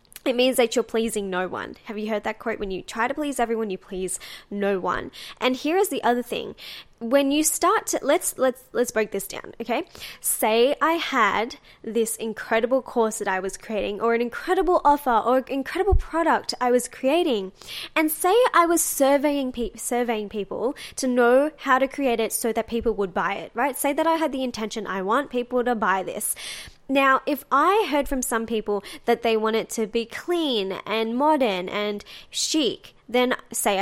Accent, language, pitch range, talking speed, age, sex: Australian, English, 220-285 Hz, 200 wpm, 10-29, female